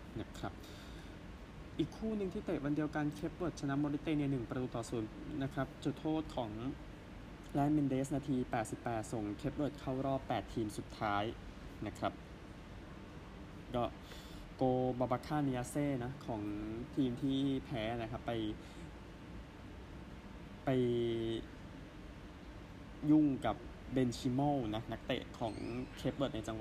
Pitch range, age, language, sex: 110-135 Hz, 20-39, Thai, male